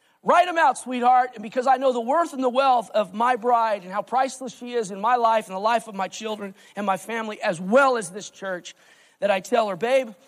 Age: 40-59